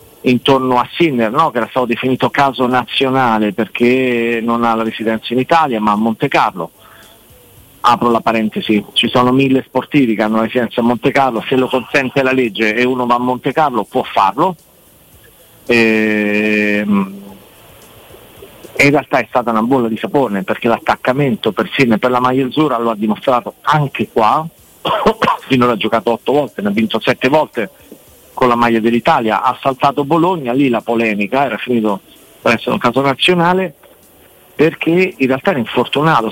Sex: male